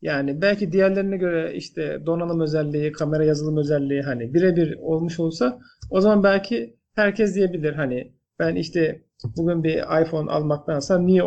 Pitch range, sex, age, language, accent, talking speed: 150-185 Hz, male, 40-59, Turkish, native, 145 wpm